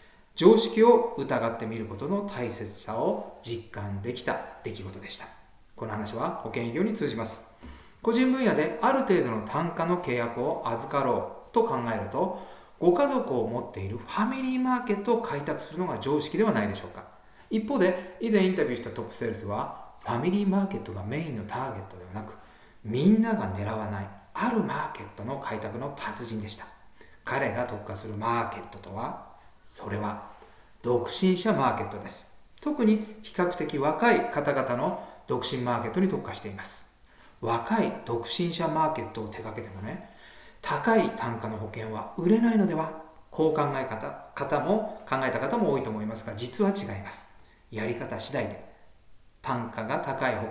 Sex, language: male, Japanese